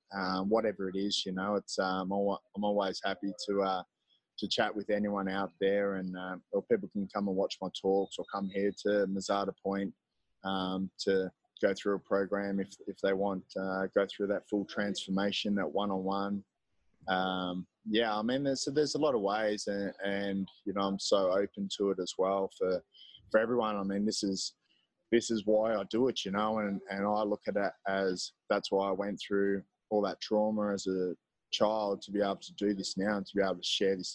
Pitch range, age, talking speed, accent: 95-105 Hz, 20-39, 215 wpm, Australian